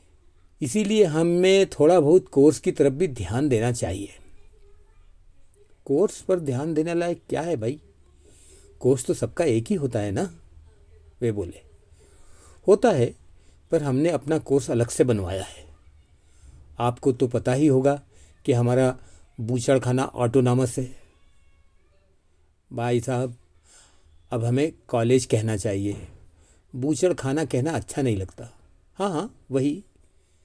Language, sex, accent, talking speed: Hindi, male, native, 130 wpm